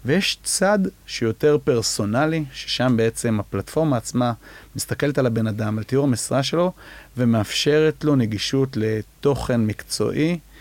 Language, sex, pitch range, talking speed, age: English, male, 110-135 Hz, 115 wpm, 30-49